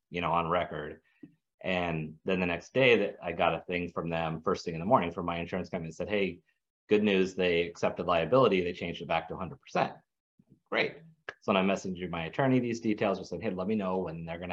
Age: 30-49